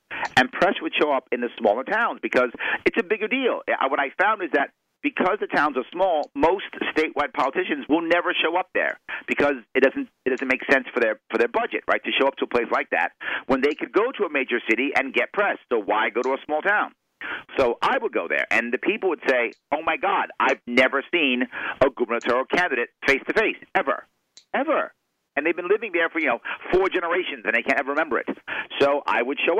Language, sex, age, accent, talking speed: English, male, 50-69, American, 230 wpm